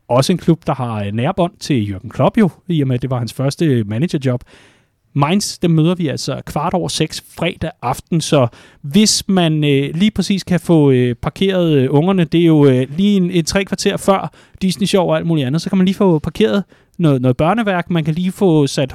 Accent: native